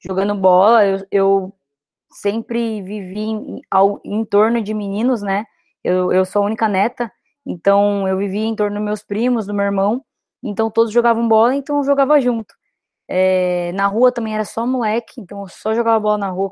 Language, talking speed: Portuguese, 195 wpm